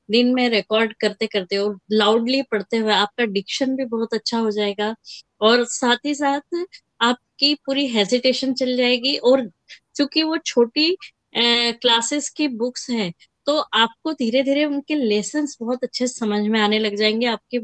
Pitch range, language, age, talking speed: 220-265 Hz, Hindi, 20-39, 150 wpm